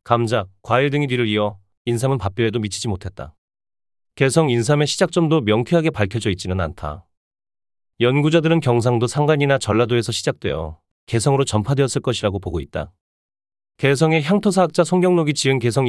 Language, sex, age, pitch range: Korean, male, 30-49, 95-145 Hz